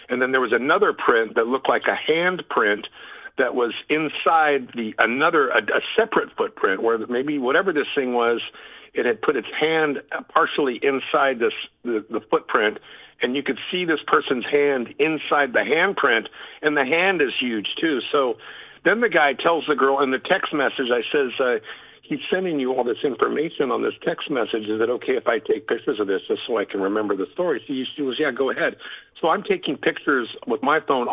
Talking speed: 205 wpm